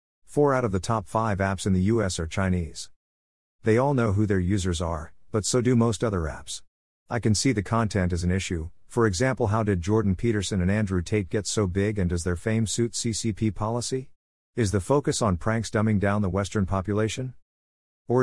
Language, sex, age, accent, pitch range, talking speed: English, male, 50-69, American, 90-115 Hz, 205 wpm